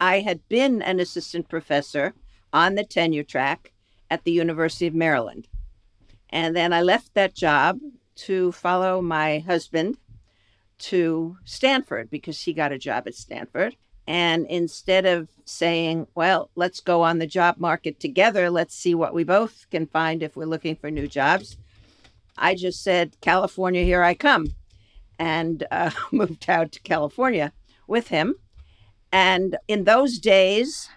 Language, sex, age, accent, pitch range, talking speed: English, female, 60-79, American, 155-185 Hz, 150 wpm